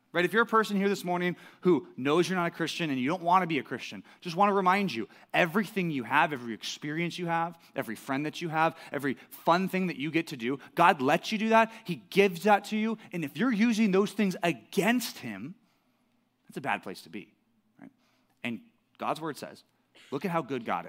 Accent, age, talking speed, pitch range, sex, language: American, 30-49, 225 wpm, 145-215 Hz, male, English